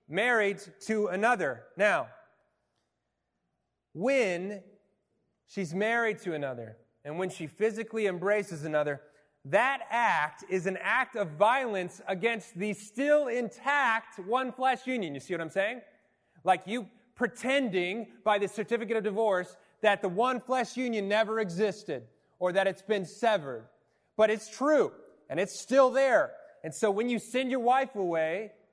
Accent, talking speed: American, 145 wpm